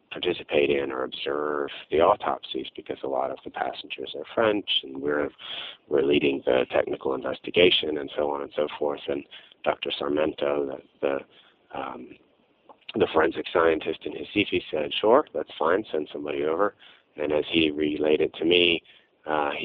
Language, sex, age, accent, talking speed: English, male, 30-49, American, 160 wpm